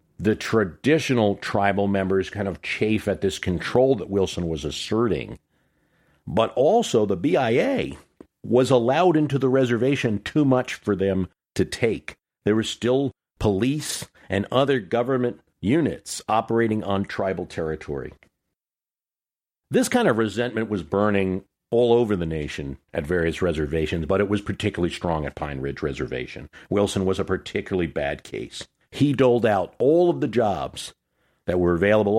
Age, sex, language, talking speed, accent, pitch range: 50-69, male, English, 145 wpm, American, 85-120 Hz